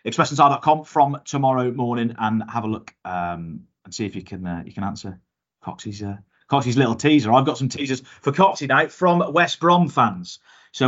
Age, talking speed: 30-49, 195 wpm